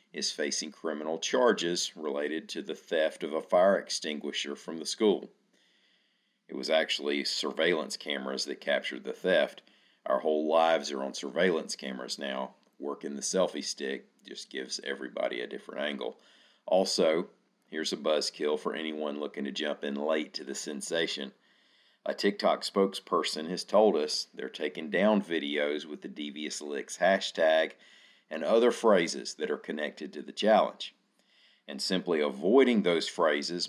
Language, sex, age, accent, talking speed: English, male, 40-59, American, 150 wpm